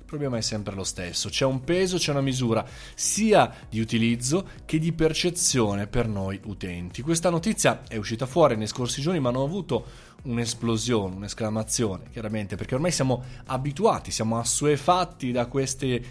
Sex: male